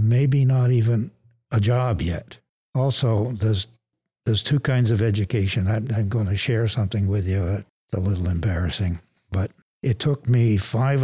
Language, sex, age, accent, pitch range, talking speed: English, male, 60-79, American, 100-120 Hz, 165 wpm